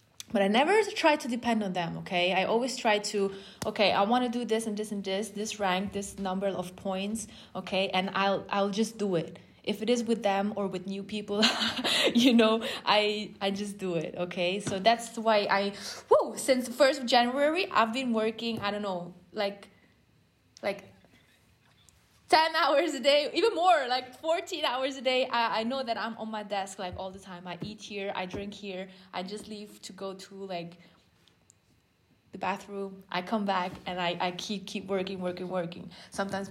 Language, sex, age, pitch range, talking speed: English, female, 20-39, 190-240 Hz, 195 wpm